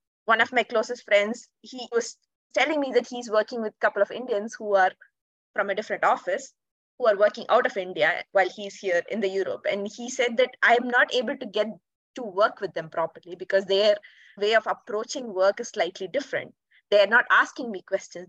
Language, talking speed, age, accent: English, 210 wpm, 20-39, Indian